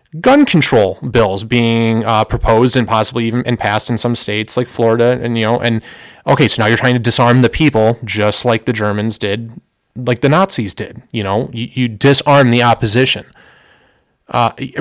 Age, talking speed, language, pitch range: 30-49, 185 wpm, English, 110-135 Hz